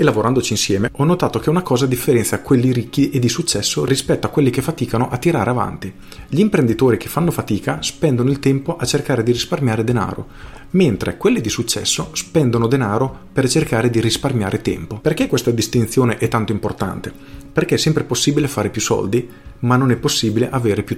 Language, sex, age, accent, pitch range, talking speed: Italian, male, 40-59, native, 110-140 Hz, 185 wpm